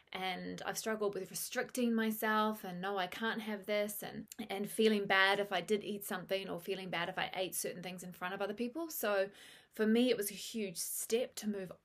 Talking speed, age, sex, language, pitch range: 225 wpm, 20-39, female, English, 200-240 Hz